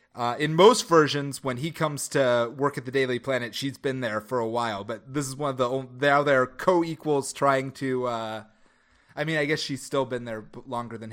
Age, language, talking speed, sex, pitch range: 30-49, English, 220 wpm, male, 130-155 Hz